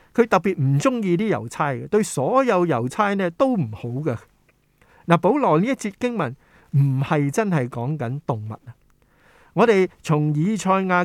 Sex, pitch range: male, 130-190 Hz